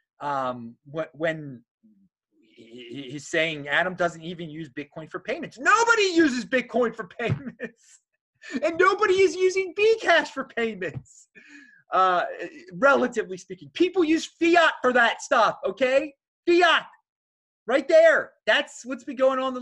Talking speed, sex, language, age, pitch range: 130 wpm, male, English, 30-49, 170-290 Hz